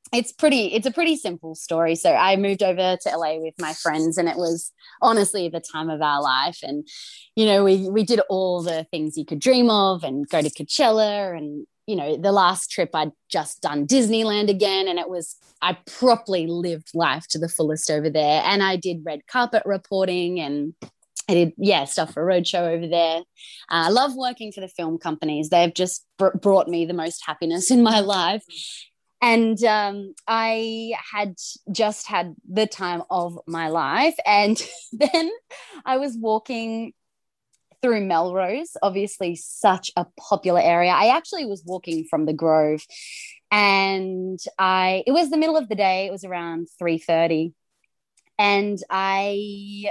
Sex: female